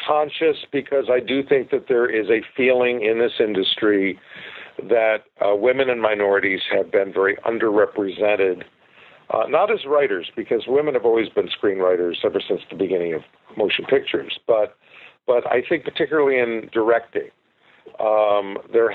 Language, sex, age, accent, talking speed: English, male, 50-69, American, 150 wpm